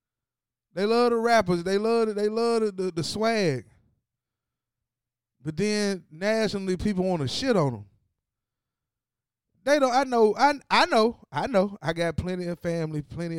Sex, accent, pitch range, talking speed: male, American, 120-175 Hz, 160 wpm